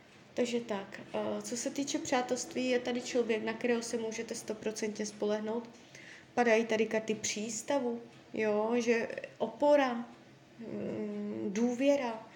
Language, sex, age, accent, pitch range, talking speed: Czech, female, 20-39, native, 220-250 Hz, 110 wpm